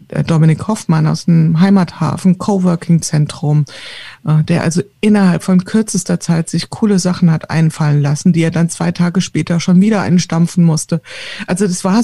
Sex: female